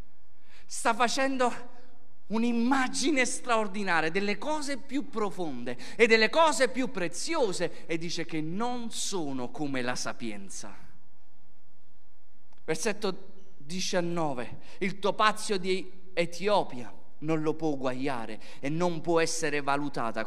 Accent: native